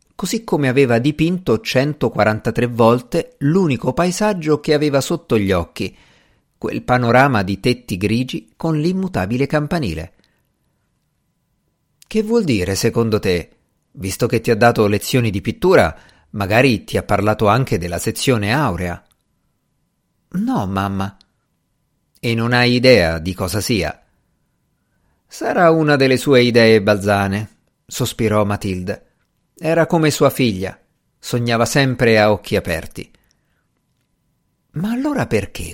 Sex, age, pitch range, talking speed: male, 50-69, 105-155 Hz, 120 wpm